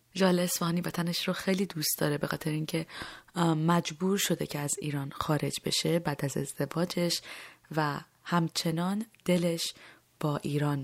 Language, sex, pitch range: Persian, female, 155-190 Hz